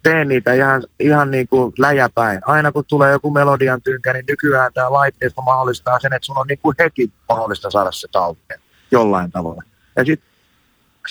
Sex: male